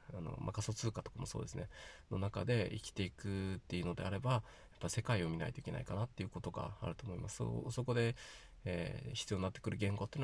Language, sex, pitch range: Japanese, male, 95-130 Hz